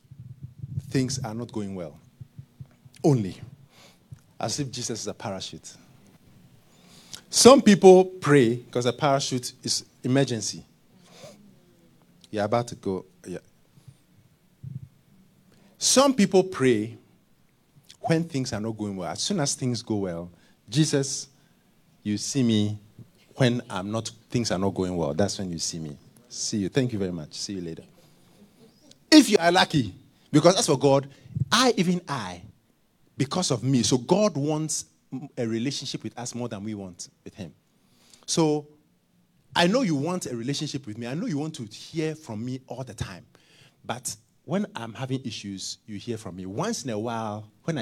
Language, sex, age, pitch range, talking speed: English, male, 50-69, 105-150 Hz, 160 wpm